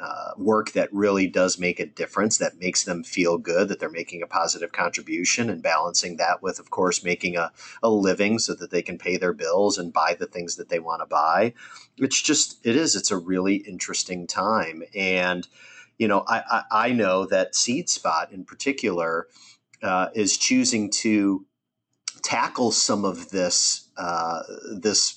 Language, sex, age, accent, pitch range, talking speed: English, male, 40-59, American, 90-115 Hz, 180 wpm